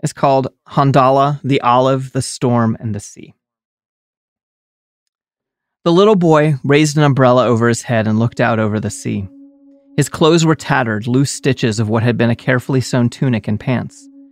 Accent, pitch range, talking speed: American, 110-140 Hz, 170 wpm